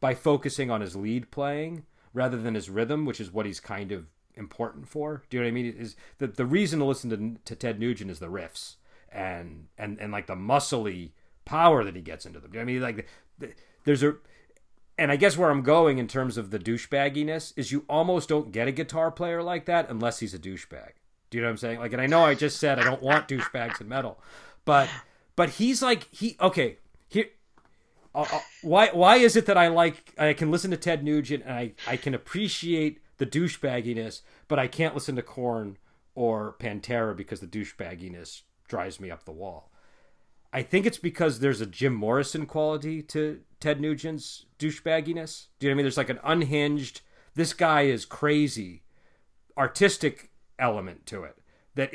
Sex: male